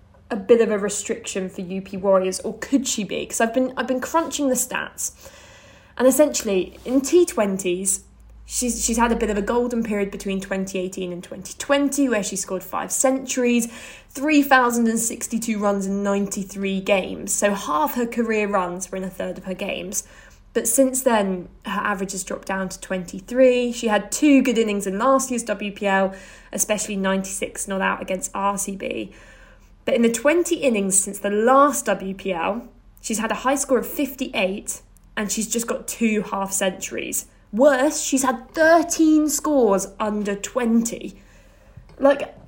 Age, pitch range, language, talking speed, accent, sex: 10-29, 195-255 Hz, English, 160 wpm, British, female